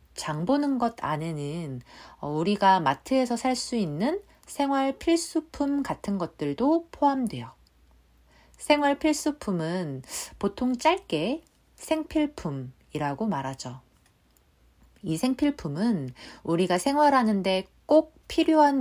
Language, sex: Korean, female